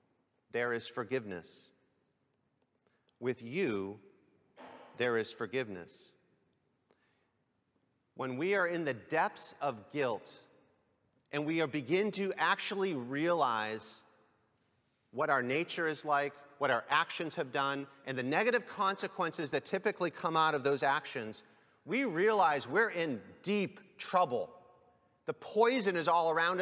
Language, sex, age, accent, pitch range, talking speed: English, male, 40-59, American, 130-190 Hz, 125 wpm